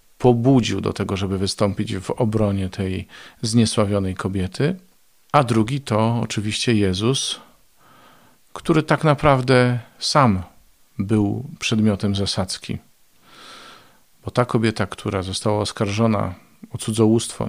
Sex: male